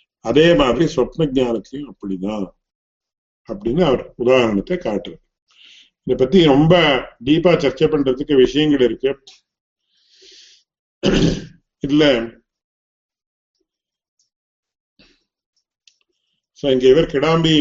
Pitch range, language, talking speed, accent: 125-155 Hz, English, 60 wpm, Indian